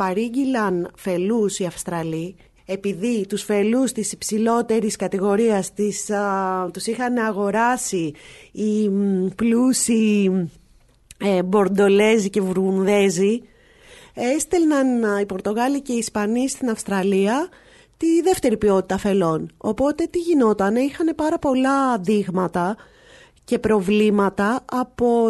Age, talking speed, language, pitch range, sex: 30-49, 100 wpm, Greek, 190-255 Hz, female